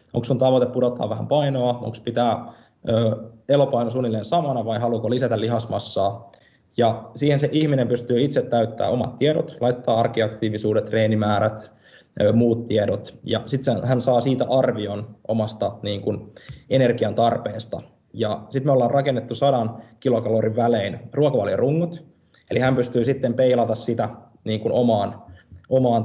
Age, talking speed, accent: 20-39, 130 wpm, native